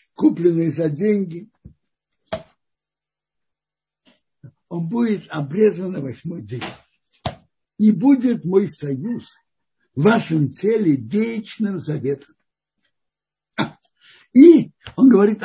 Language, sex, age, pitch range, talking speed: Russian, male, 60-79, 150-210 Hz, 80 wpm